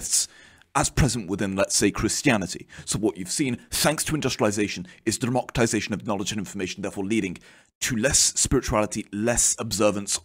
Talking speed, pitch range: 160 wpm, 100-120 Hz